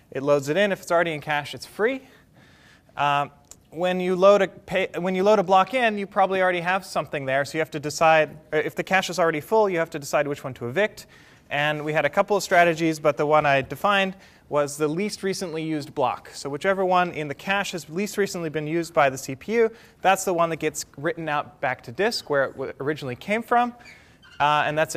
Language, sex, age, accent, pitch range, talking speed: English, male, 30-49, American, 145-190 Hz, 240 wpm